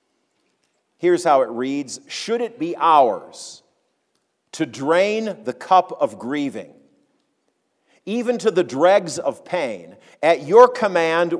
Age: 50-69